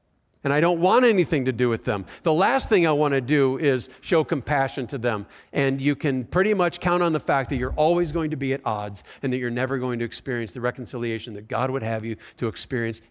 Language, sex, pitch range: English, male, 125-175 Hz